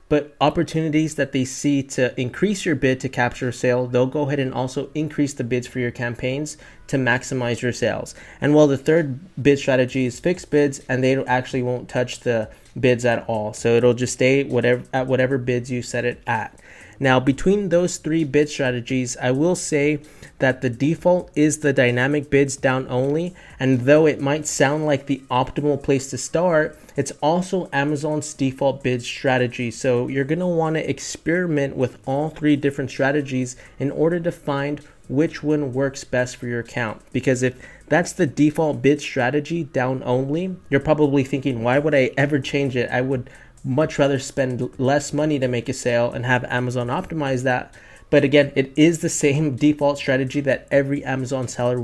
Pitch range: 125-150 Hz